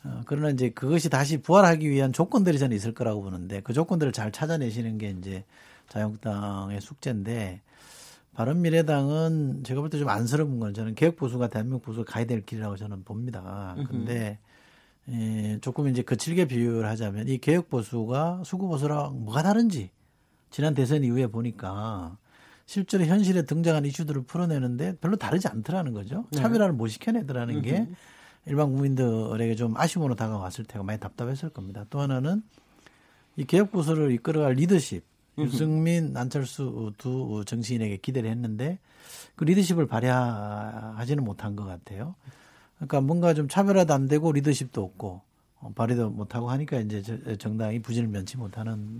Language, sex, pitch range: Korean, male, 110-155 Hz